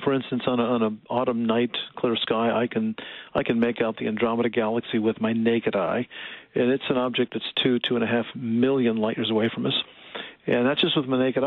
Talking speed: 235 wpm